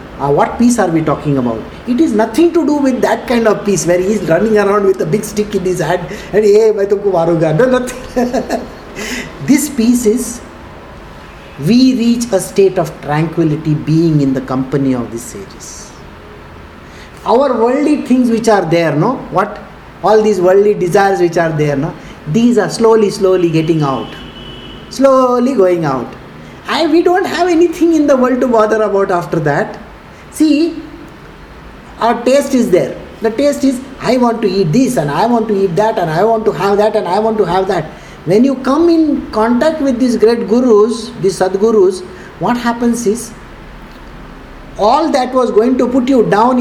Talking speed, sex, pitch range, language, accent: 180 wpm, male, 175-245 Hz, English, Indian